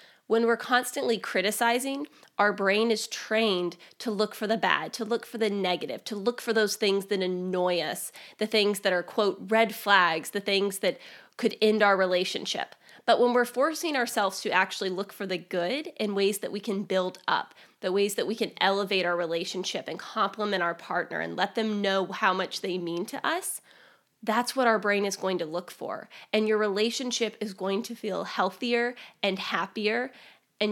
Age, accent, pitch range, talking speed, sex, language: 20-39, American, 195-230 Hz, 195 wpm, female, English